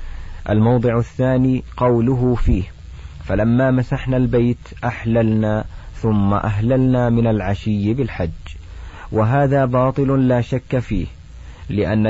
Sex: male